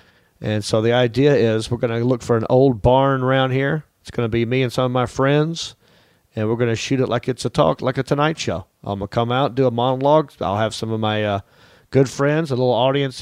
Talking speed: 270 wpm